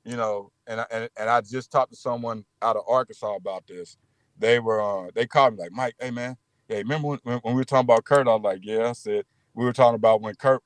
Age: 50-69